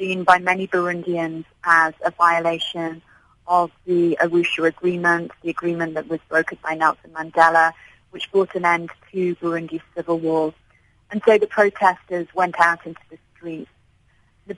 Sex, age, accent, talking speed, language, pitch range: female, 30-49, British, 150 wpm, English, 165-185 Hz